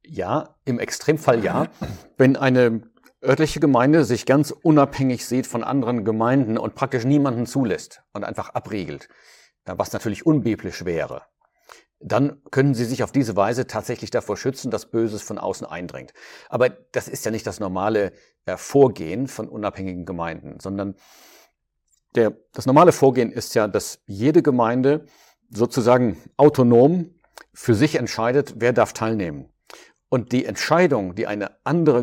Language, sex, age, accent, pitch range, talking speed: German, male, 50-69, German, 105-135 Hz, 140 wpm